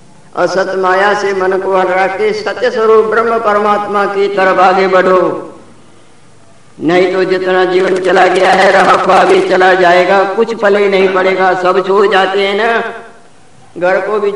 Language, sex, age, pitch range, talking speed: Hindi, female, 50-69, 185-200 Hz, 160 wpm